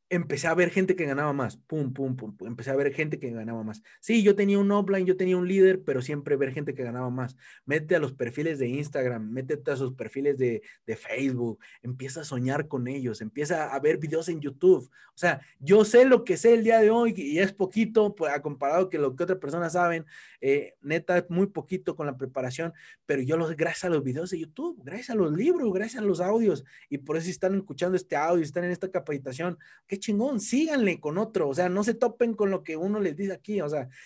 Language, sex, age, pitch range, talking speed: Spanish, male, 30-49, 140-190 Hz, 240 wpm